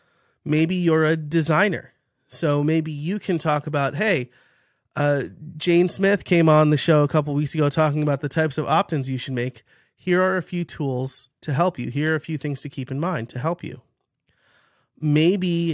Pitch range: 135-175 Hz